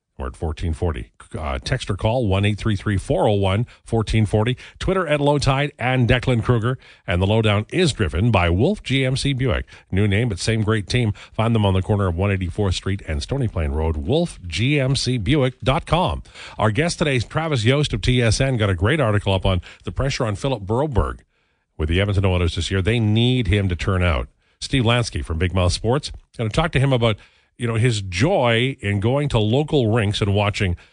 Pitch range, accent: 90-125 Hz, American